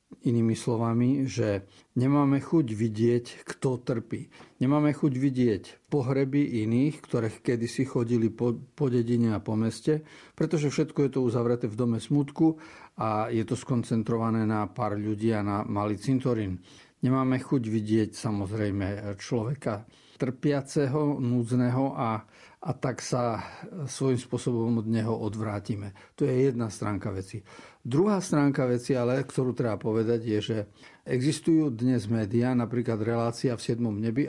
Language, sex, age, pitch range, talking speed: Slovak, male, 50-69, 110-135 Hz, 140 wpm